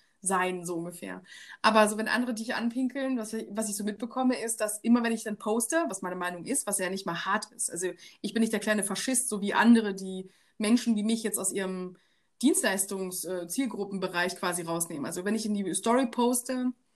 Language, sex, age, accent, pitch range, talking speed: German, female, 20-39, German, 200-250 Hz, 205 wpm